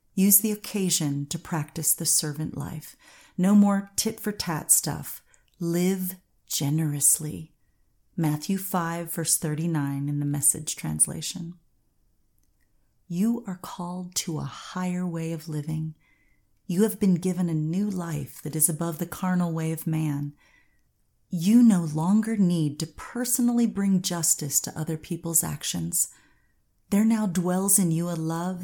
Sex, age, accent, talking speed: female, 30-49, American, 135 wpm